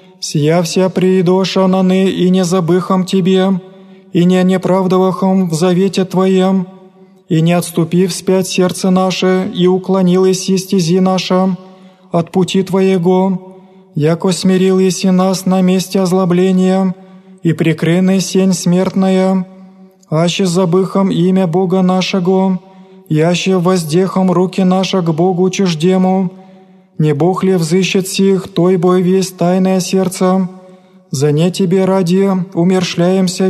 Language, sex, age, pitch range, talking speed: Greek, male, 20-39, 180-190 Hz, 115 wpm